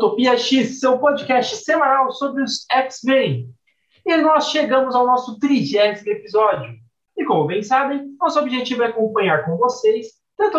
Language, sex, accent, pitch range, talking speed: Portuguese, male, Brazilian, 195-265 Hz, 145 wpm